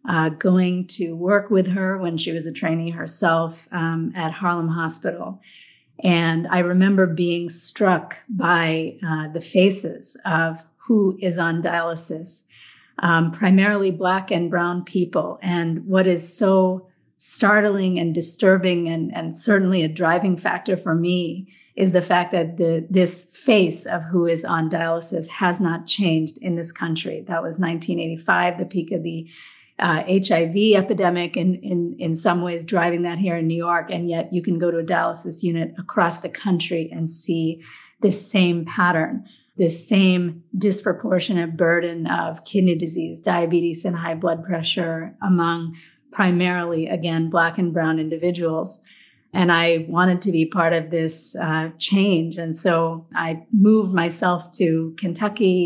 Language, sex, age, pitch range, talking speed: English, female, 40-59, 165-185 Hz, 155 wpm